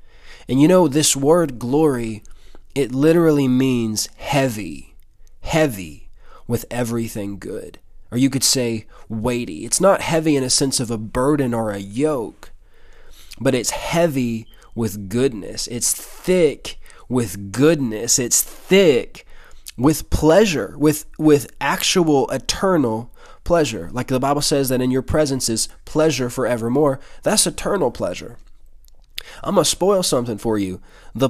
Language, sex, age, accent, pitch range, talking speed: English, male, 20-39, American, 110-145 Hz, 135 wpm